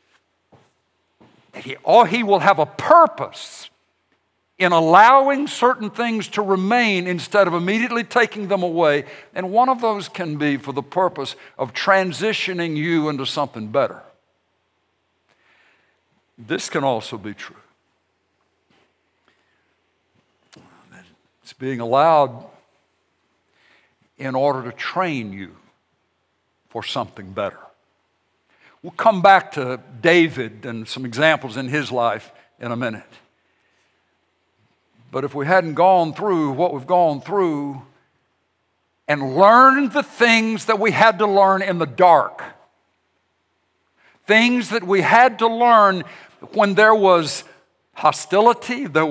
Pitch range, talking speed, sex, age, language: 145-220 Hz, 115 wpm, male, 60-79, English